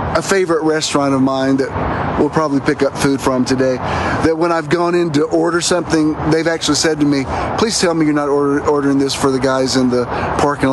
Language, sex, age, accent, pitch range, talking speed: English, male, 50-69, American, 135-170 Hz, 225 wpm